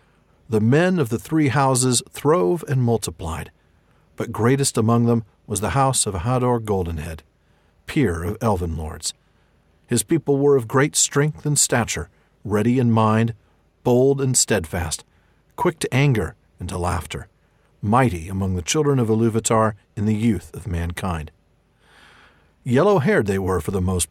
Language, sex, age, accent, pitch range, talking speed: English, male, 50-69, American, 90-130 Hz, 150 wpm